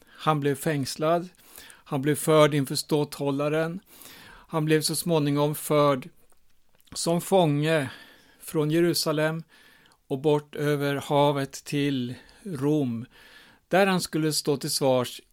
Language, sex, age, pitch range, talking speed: Swedish, male, 60-79, 130-160 Hz, 115 wpm